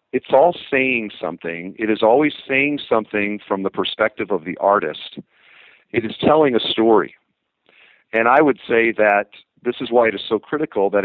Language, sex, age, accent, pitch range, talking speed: English, male, 50-69, American, 100-125 Hz, 180 wpm